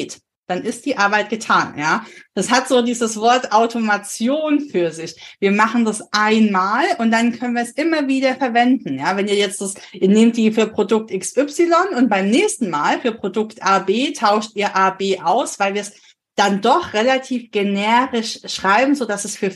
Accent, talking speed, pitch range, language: German, 185 wpm, 195-260 Hz, German